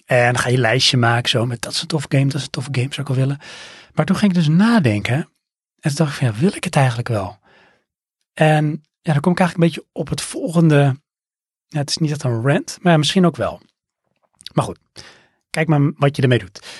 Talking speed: 245 wpm